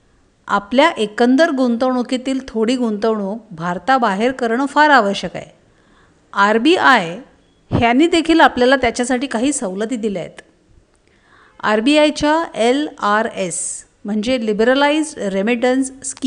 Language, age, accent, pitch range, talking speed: Marathi, 50-69, native, 215-275 Hz, 105 wpm